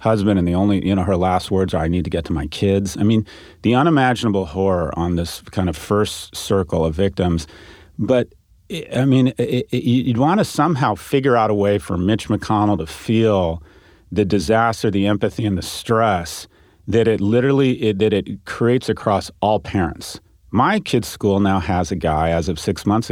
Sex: male